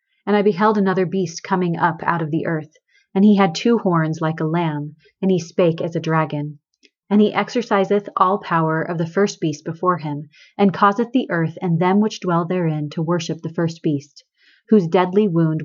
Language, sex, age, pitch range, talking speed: English, female, 30-49, 160-195 Hz, 205 wpm